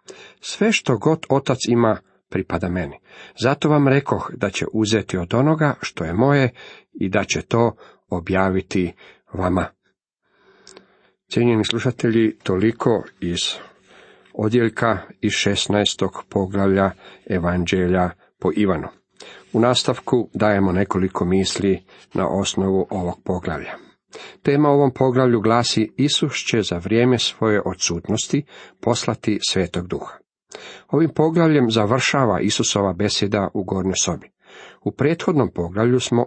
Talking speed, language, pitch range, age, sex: 115 wpm, Croatian, 95-135 Hz, 40-59, male